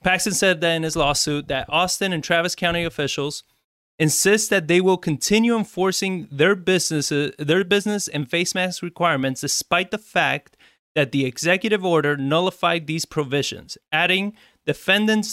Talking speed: 145 wpm